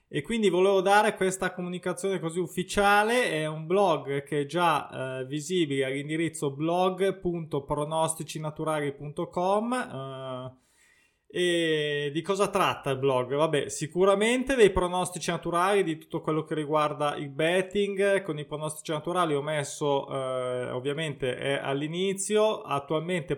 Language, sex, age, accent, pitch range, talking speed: Italian, male, 20-39, native, 140-185 Hz, 125 wpm